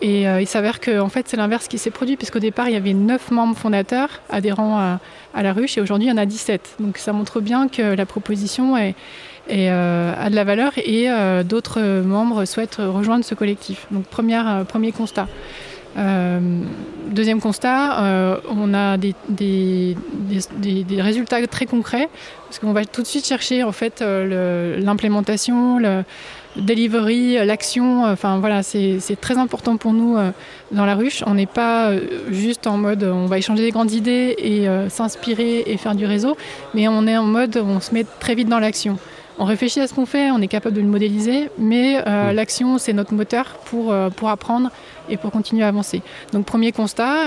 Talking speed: 185 wpm